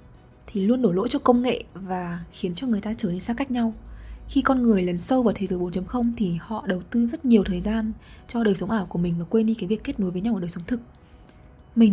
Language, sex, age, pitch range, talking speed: Vietnamese, female, 20-39, 190-245 Hz, 270 wpm